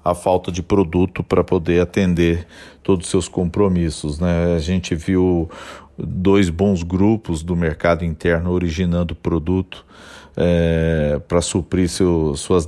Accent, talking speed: Brazilian, 125 wpm